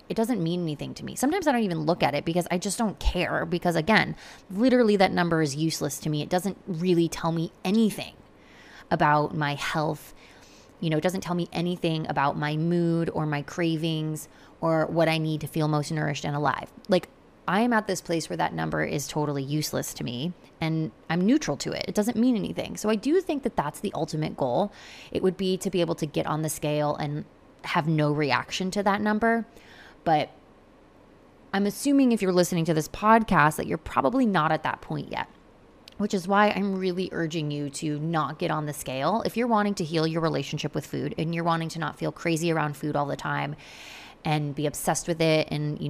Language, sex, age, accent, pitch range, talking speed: English, female, 20-39, American, 150-190 Hz, 220 wpm